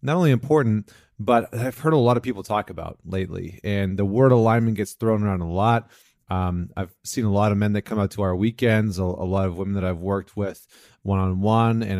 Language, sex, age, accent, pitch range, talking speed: English, male, 30-49, American, 105-125 Hz, 225 wpm